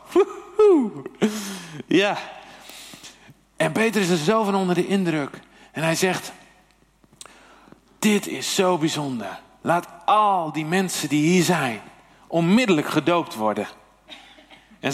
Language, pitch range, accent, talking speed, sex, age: Dutch, 135-210 Hz, Dutch, 115 wpm, male, 50-69